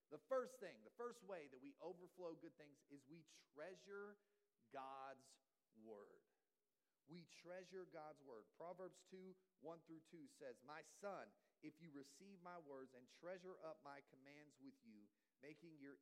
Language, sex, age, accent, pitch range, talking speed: English, male, 40-59, American, 140-200 Hz, 155 wpm